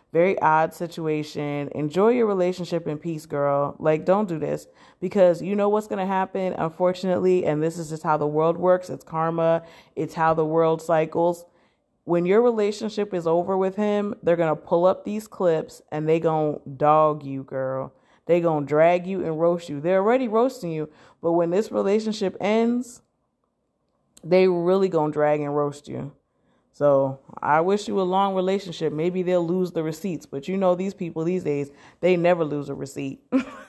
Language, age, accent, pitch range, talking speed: English, 30-49, American, 160-195 Hz, 190 wpm